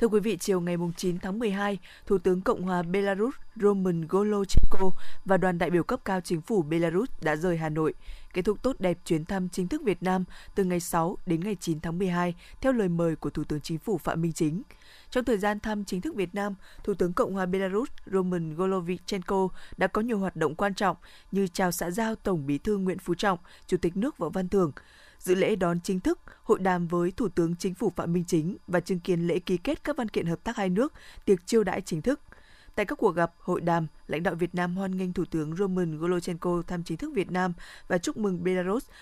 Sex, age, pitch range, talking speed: female, 20-39, 175-205 Hz, 235 wpm